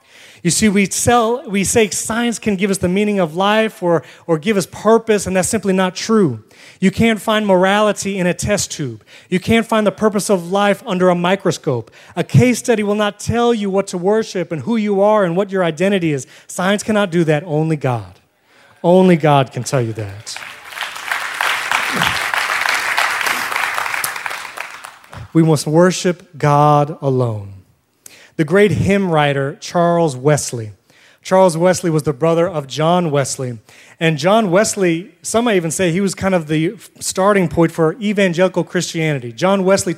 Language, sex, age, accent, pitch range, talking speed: English, male, 30-49, American, 150-195 Hz, 165 wpm